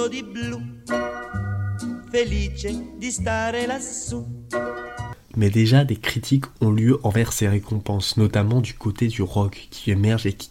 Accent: French